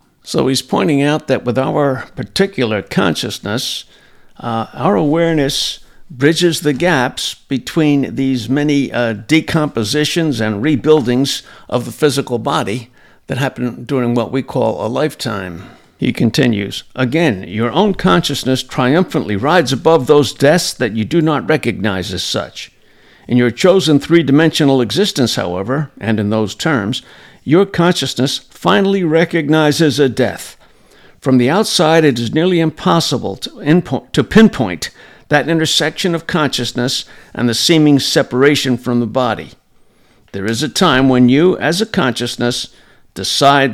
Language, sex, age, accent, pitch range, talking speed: English, male, 60-79, American, 120-160 Hz, 135 wpm